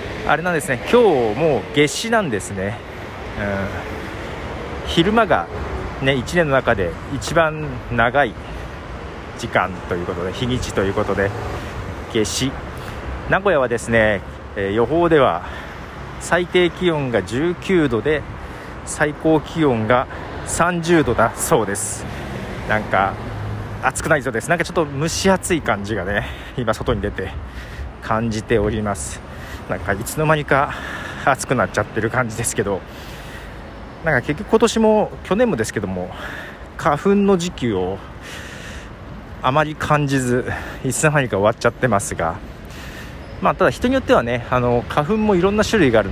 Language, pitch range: Japanese, 100-155 Hz